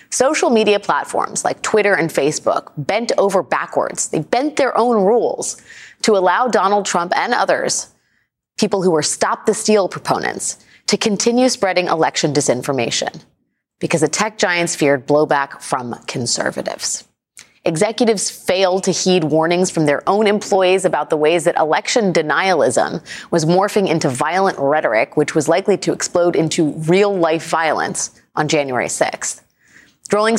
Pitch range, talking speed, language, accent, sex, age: 160-210 Hz, 145 wpm, English, American, female, 30-49